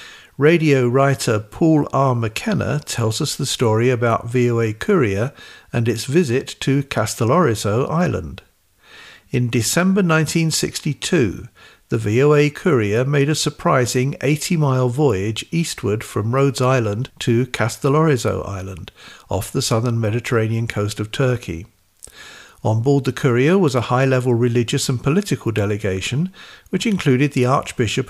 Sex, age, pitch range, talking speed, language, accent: male, 50-69, 110-145 Hz, 125 wpm, English, British